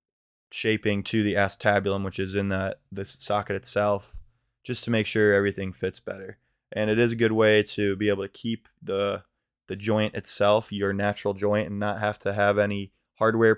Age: 20-39